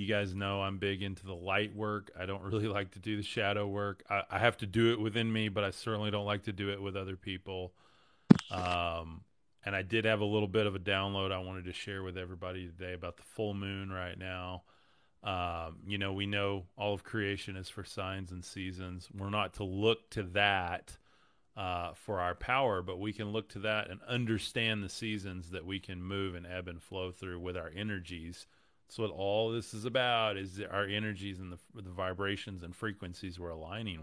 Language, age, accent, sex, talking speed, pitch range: English, 30-49, American, male, 215 wpm, 90-110 Hz